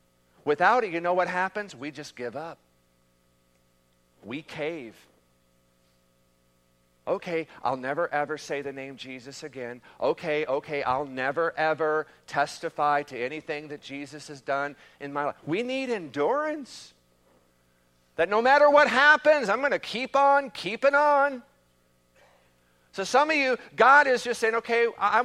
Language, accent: English, American